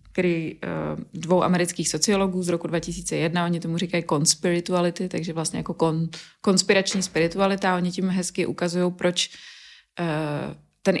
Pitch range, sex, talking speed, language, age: 160-180 Hz, female, 135 wpm, Czech, 20-39